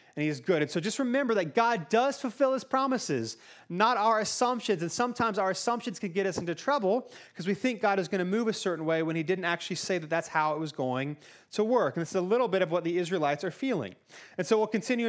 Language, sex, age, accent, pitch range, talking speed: English, male, 30-49, American, 170-225 Hz, 265 wpm